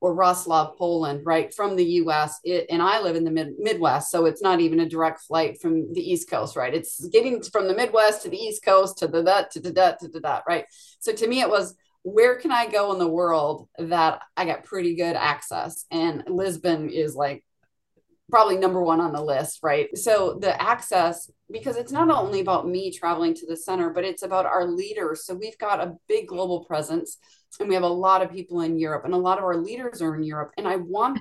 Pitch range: 165-215 Hz